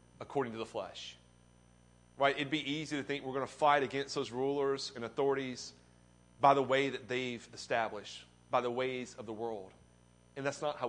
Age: 30-49